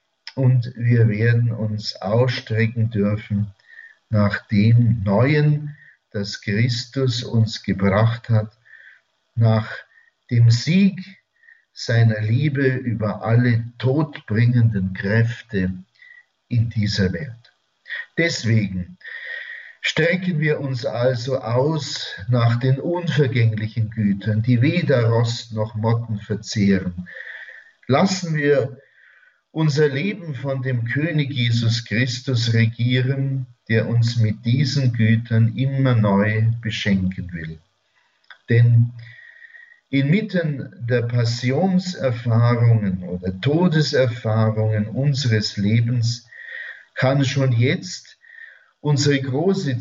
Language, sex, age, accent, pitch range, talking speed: German, male, 50-69, German, 110-145 Hz, 90 wpm